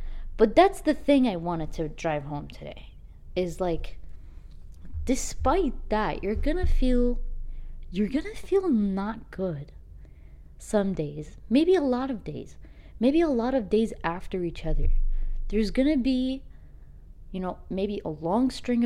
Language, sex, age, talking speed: English, female, 20-39, 155 wpm